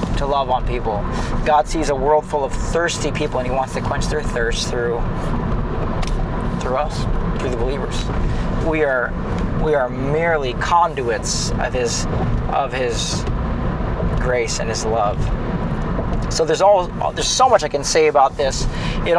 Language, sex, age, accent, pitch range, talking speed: English, male, 40-59, American, 135-160 Hz, 160 wpm